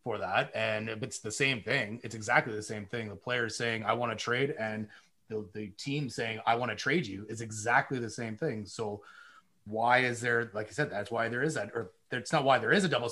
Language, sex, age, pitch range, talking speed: English, male, 30-49, 110-140 Hz, 250 wpm